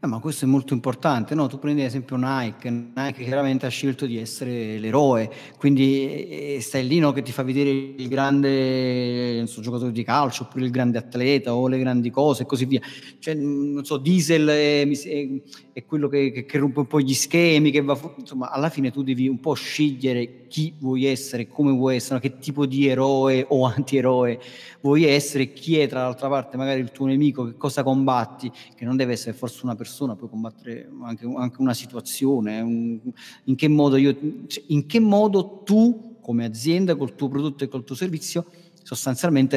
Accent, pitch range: native, 125-145 Hz